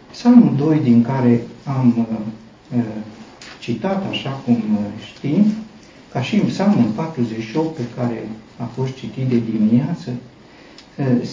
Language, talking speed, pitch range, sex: Romanian, 125 wpm, 120-180 Hz, male